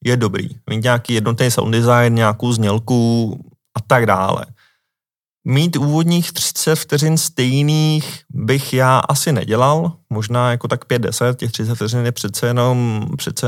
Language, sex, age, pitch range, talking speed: Czech, male, 20-39, 115-135 Hz, 140 wpm